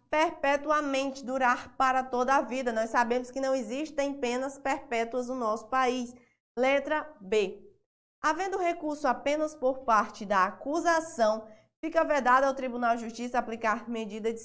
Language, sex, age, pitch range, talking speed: Portuguese, female, 20-39, 225-275 Hz, 140 wpm